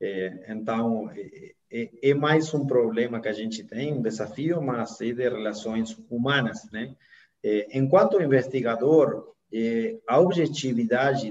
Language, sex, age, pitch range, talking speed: Portuguese, male, 40-59, 120-160 Hz, 115 wpm